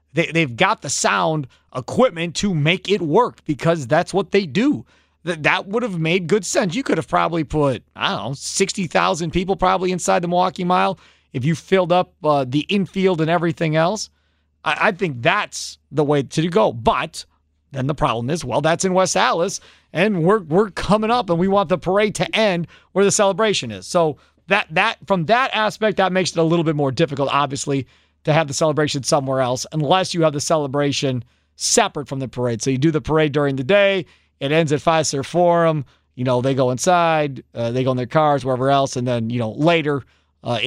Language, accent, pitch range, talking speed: English, American, 135-175 Hz, 210 wpm